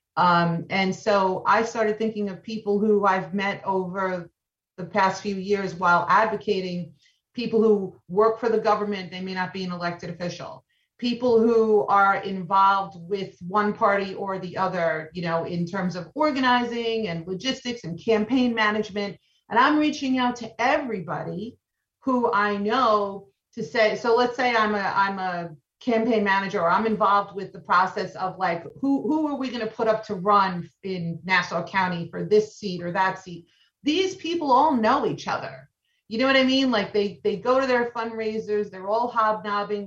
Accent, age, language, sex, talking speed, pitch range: American, 40-59, English, female, 180 wpm, 185-220 Hz